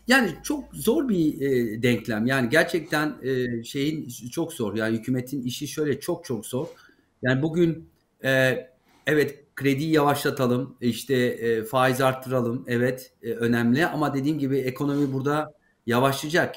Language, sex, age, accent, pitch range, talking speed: Turkish, male, 50-69, native, 120-150 Hz, 120 wpm